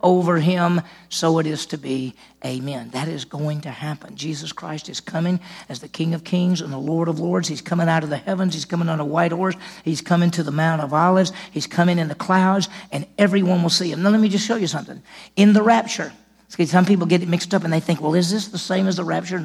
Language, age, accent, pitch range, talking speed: English, 50-69, American, 150-180 Hz, 260 wpm